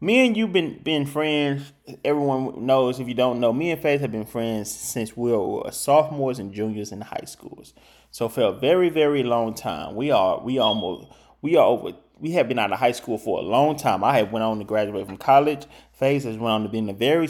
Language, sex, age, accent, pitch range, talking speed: English, male, 20-39, American, 115-145 Hz, 235 wpm